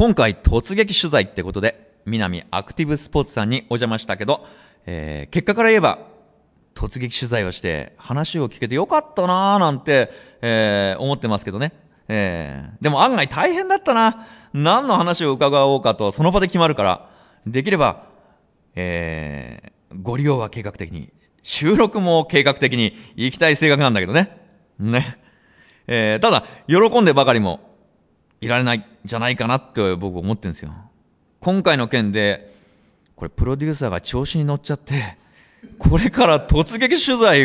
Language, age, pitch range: Japanese, 30-49, 100-170 Hz